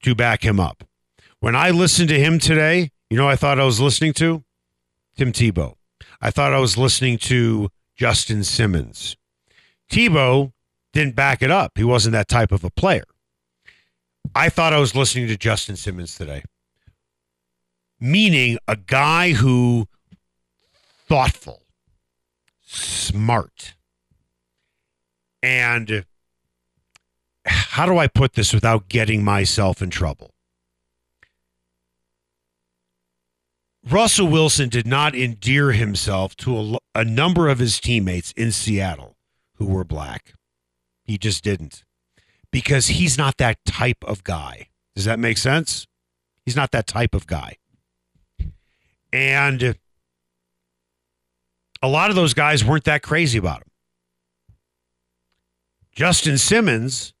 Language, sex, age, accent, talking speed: English, male, 50-69, American, 125 wpm